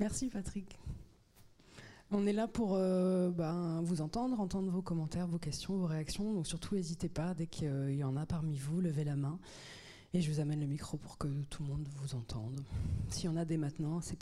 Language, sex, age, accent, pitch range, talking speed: French, female, 20-39, French, 150-180 Hz, 215 wpm